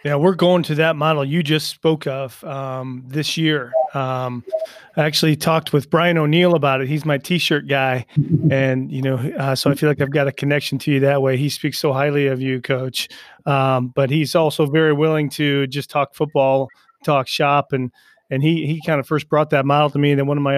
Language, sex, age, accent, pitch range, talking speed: English, male, 30-49, American, 135-155 Hz, 225 wpm